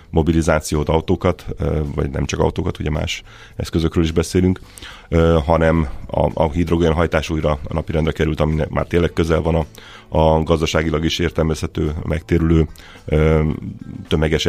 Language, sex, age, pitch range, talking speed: Hungarian, male, 30-49, 75-85 Hz, 130 wpm